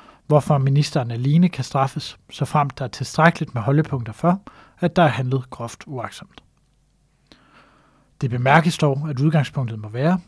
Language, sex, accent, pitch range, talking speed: Danish, male, native, 130-155 Hz, 145 wpm